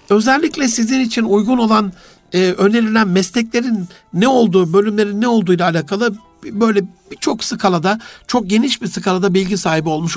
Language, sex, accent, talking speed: Turkish, male, native, 150 wpm